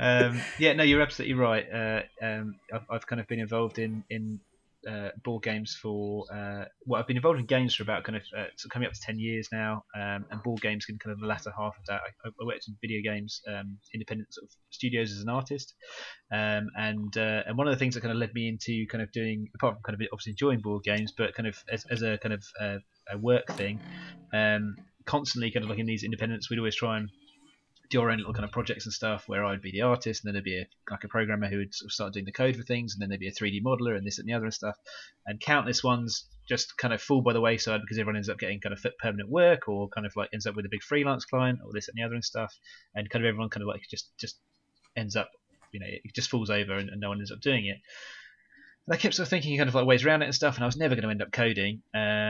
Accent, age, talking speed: British, 20-39, 280 wpm